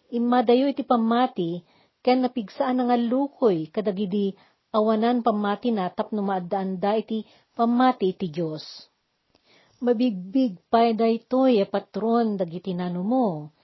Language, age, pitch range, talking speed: Filipino, 50-69, 185-240 Hz, 95 wpm